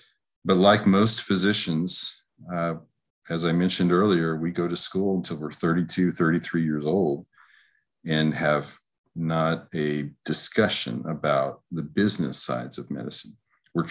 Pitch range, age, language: 75-90 Hz, 50-69, English